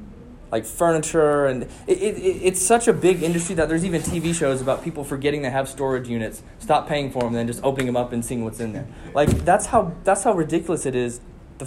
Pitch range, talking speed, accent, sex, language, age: 110-155 Hz, 230 wpm, American, male, English, 20-39